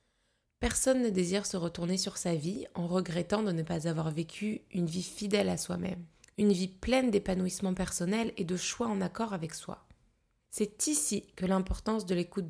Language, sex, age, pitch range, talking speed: French, female, 20-39, 180-225 Hz, 180 wpm